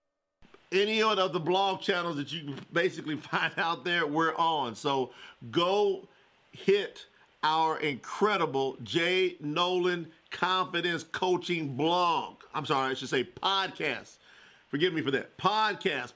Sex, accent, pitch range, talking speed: male, American, 150-185 Hz, 135 wpm